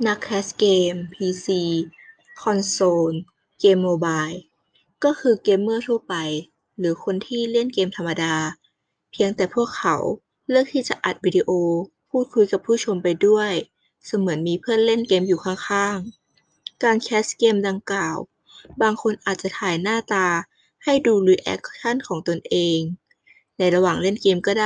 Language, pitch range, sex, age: Thai, 170-215 Hz, female, 20-39